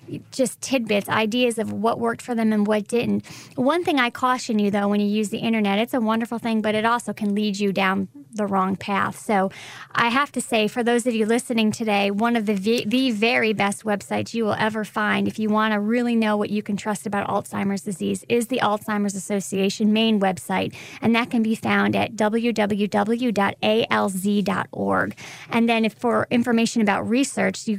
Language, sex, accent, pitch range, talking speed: English, female, American, 200-235 Hz, 200 wpm